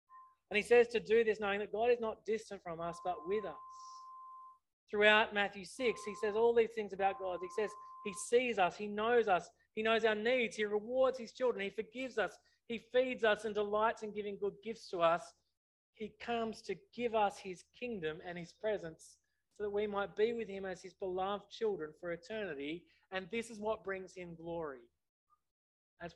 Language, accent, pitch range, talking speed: English, Australian, 165-220 Hz, 200 wpm